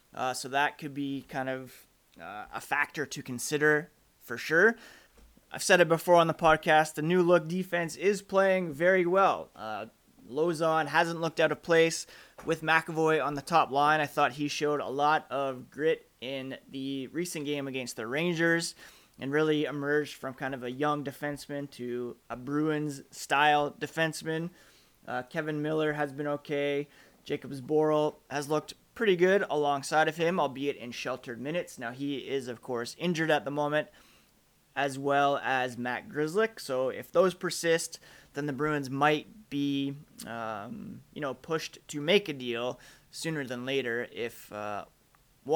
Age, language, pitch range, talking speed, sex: 30-49, English, 135-160 Hz, 165 wpm, male